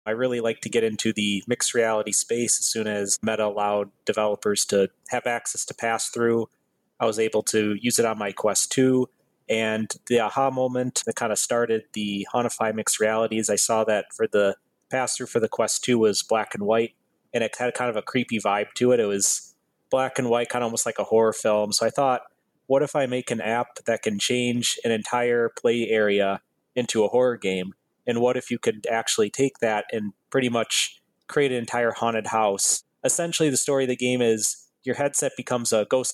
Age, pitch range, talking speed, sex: 30-49, 110-125 Hz, 215 wpm, male